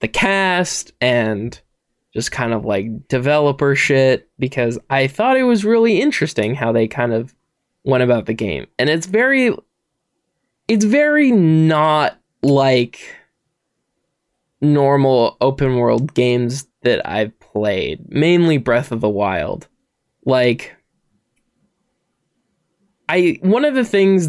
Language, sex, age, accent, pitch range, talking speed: English, male, 20-39, American, 125-175 Hz, 120 wpm